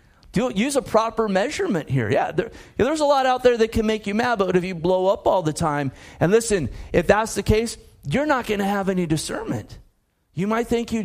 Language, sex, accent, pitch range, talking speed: English, male, American, 175-215 Hz, 225 wpm